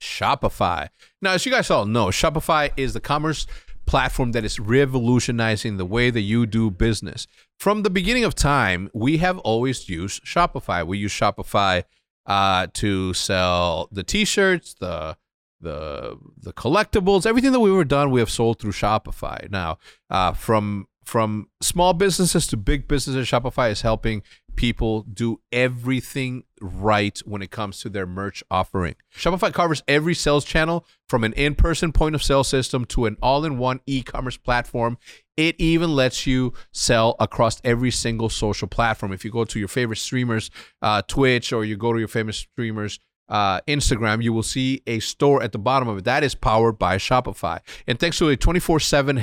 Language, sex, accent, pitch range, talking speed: English, male, American, 110-145 Hz, 170 wpm